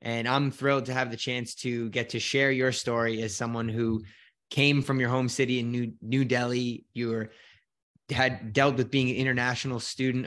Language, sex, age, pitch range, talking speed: English, male, 20-39, 115-130 Hz, 195 wpm